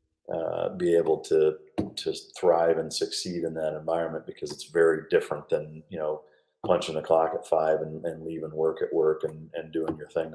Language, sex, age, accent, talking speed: English, male, 40-59, American, 195 wpm